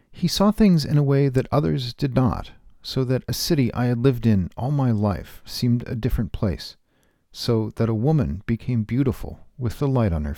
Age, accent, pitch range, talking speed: 50-69, American, 95-125 Hz, 210 wpm